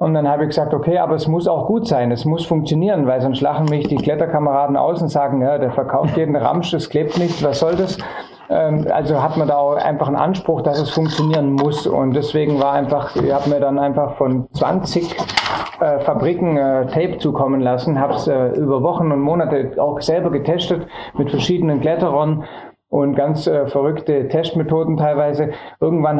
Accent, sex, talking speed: German, male, 180 wpm